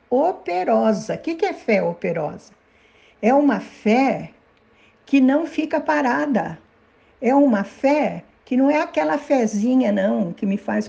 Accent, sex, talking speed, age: Brazilian, female, 140 wpm, 60-79